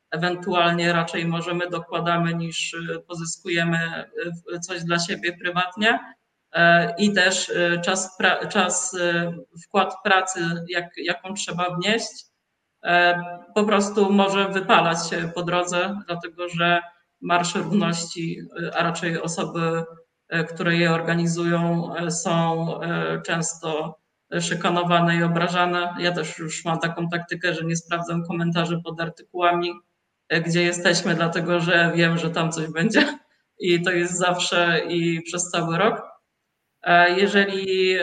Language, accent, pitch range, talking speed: Polish, native, 170-185 Hz, 110 wpm